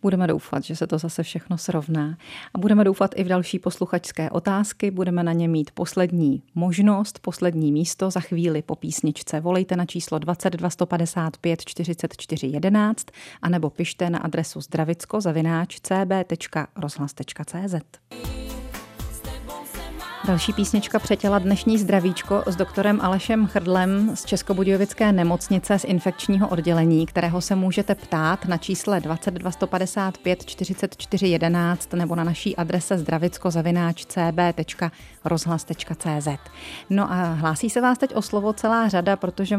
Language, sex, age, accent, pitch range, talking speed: Czech, female, 30-49, native, 170-200 Hz, 115 wpm